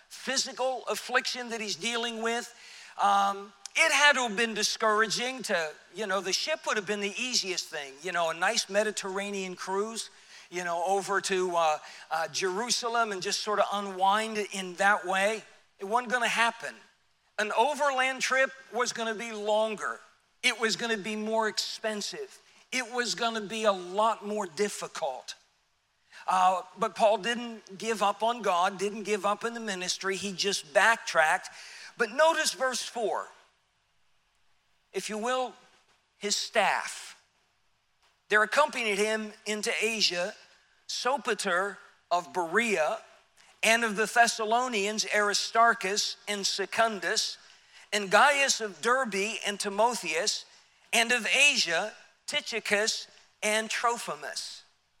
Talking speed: 140 wpm